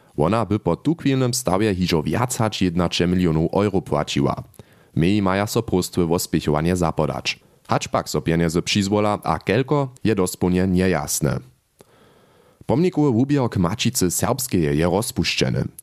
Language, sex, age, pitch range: German, male, 30-49, 85-110 Hz